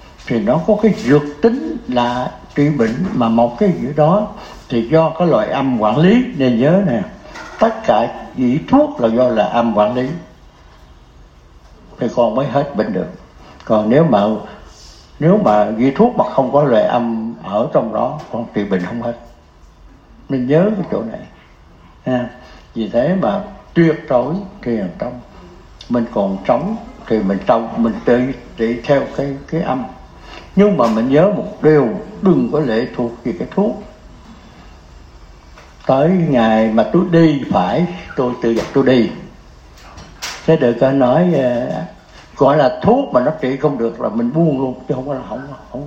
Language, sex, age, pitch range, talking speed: Vietnamese, male, 60-79, 115-175 Hz, 175 wpm